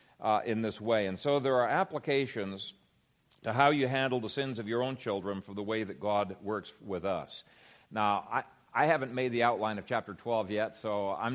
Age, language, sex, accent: 50-69, English, male, American